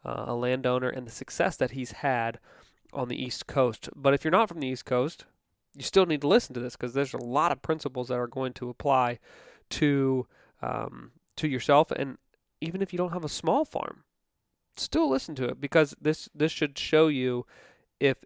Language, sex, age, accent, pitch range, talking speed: English, male, 30-49, American, 125-150 Hz, 205 wpm